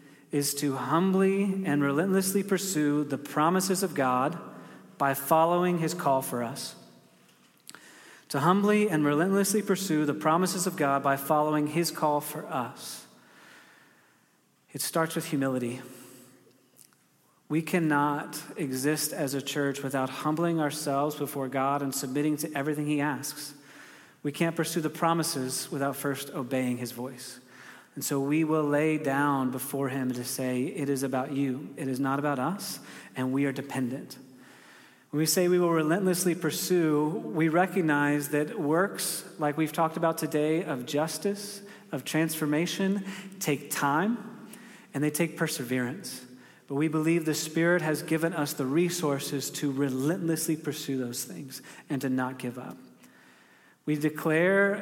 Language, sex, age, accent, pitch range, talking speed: English, male, 30-49, American, 140-165 Hz, 145 wpm